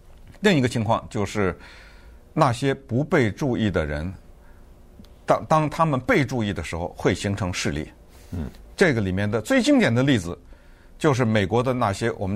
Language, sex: Chinese, male